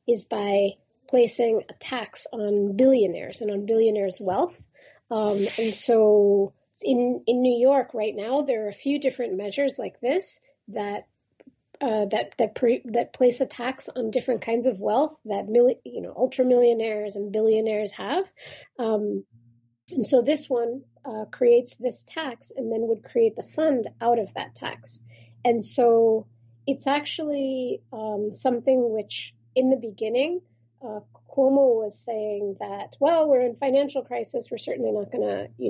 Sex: female